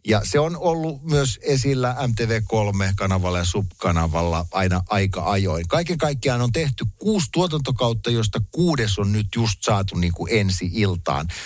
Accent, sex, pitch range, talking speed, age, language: native, male, 90-120 Hz, 145 wpm, 60-79, Finnish